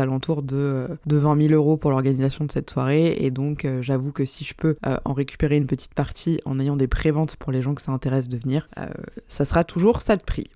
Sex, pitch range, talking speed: female, 140-165 Hz, 250 wpm